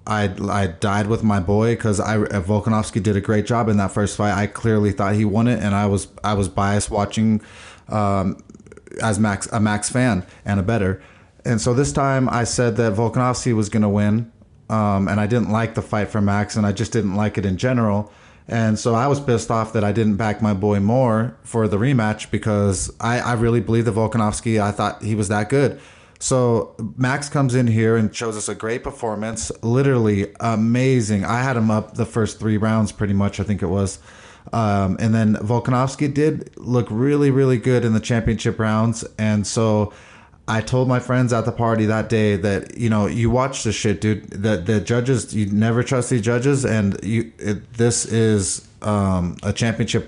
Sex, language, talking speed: male, English, 205 wpm